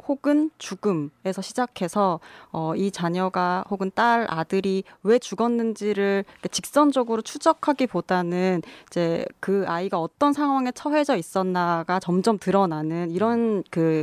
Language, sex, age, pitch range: Korean, female, 20-39, 175-235 Hz